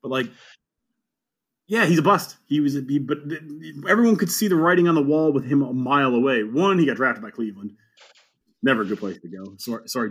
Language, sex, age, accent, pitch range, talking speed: English, male, 30-49, American, 125-165 Hz, 210 wpm